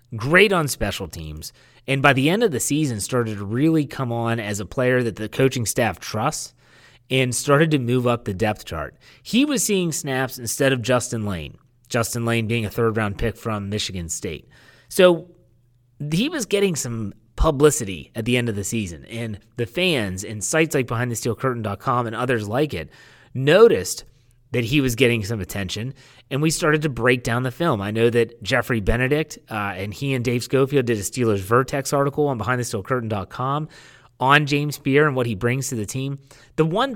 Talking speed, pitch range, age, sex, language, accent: 190 wpm, 115-150 Hz, 30-49, male, English, American